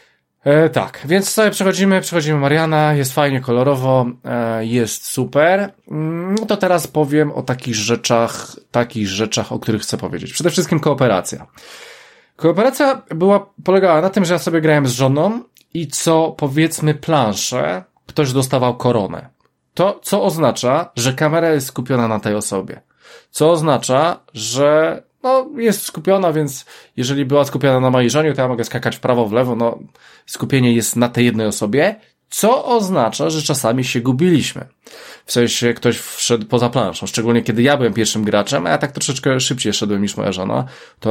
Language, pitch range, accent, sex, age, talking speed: Polish, 120-160 Hz, native, male, 20-39, 160 wpm